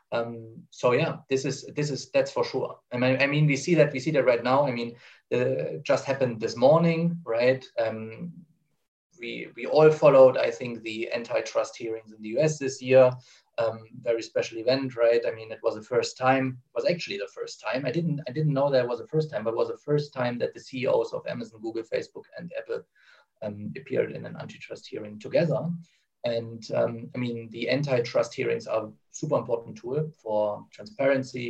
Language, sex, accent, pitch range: English, male, German, 120-160 Hz